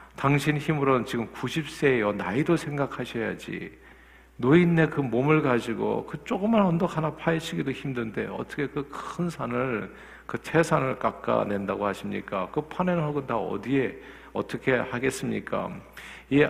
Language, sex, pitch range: Korean, male, 110-155 Hz